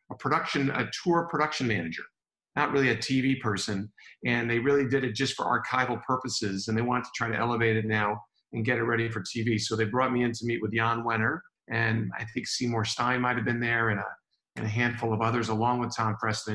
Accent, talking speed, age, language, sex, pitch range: American, 230 wpm, 40-59, English, male, 110-125 Hz